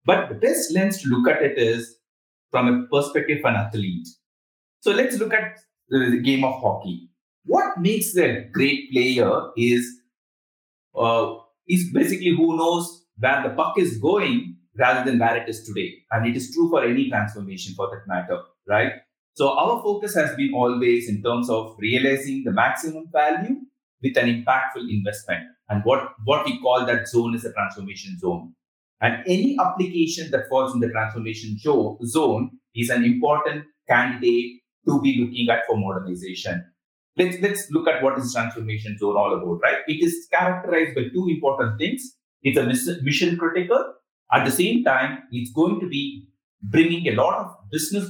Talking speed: 170 wpm